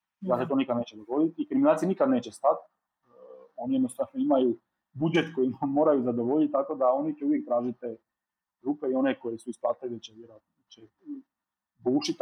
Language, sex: Croatian, male